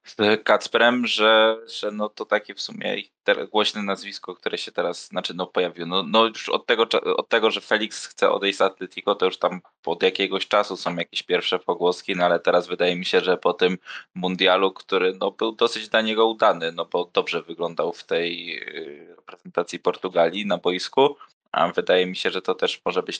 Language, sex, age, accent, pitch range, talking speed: Polish, male, 20-39, native, 90-105 Hz, 195 wpm